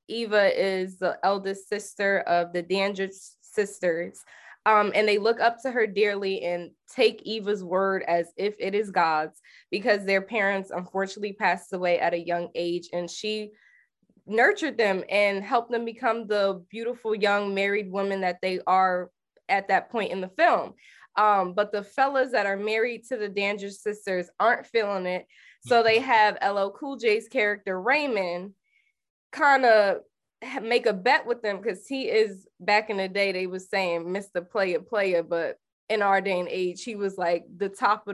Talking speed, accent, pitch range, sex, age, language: 175 wpm, American, 190-235 Hz, female, 20-39, English